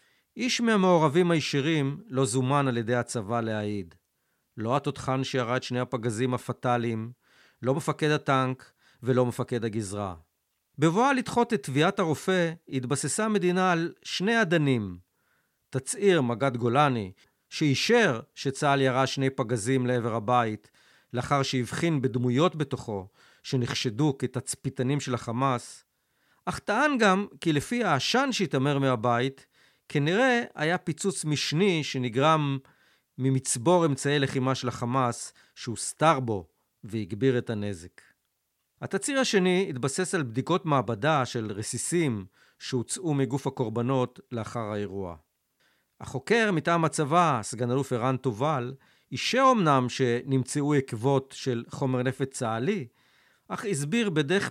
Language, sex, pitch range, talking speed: Hebrew, male, 125-165 Hz, 115 wpm